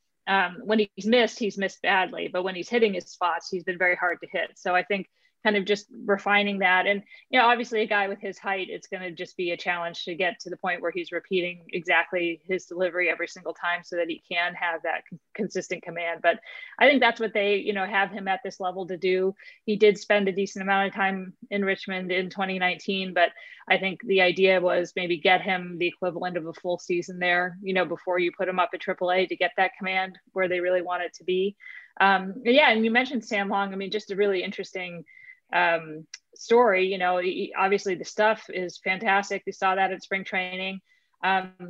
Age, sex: 30-49, female